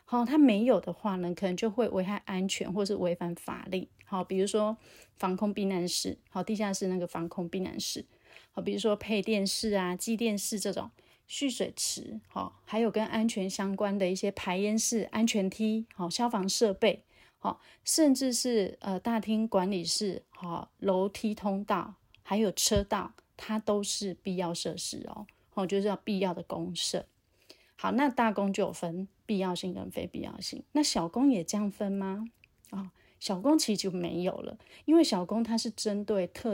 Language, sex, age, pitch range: Chinese, female, 30-49, 185-220 Hz